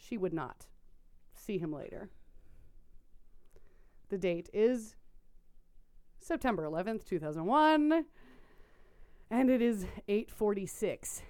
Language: English